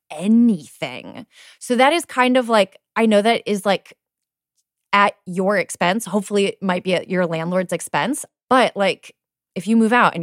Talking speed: 175 wpm